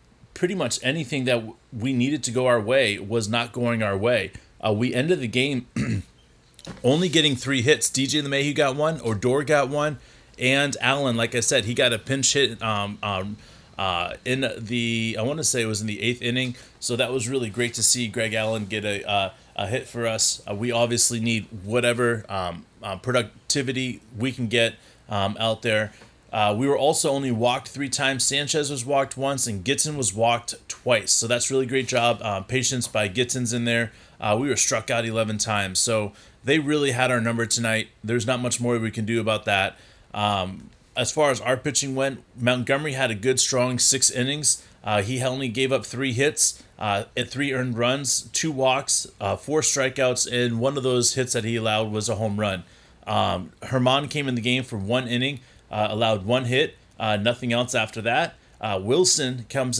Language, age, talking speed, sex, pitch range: English, 30-49, 205 wpm, male, 110-130 Hz